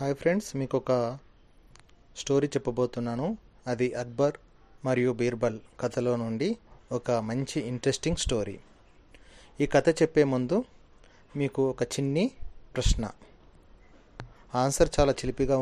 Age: 30-49